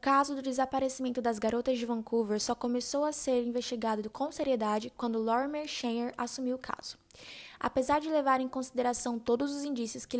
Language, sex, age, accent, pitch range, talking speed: Portuguese, female, 10-29, Brazilian, 235-275 Hz, 175 wpm